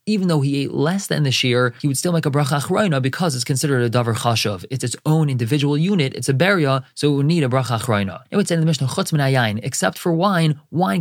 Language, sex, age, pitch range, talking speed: English, male, 20-39, 125-150 Hz, 260 wpm